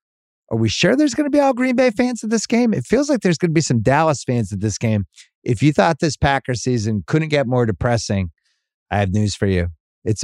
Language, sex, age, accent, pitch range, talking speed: English, male, 30-49, American, 115-170 Hz, 250 wpm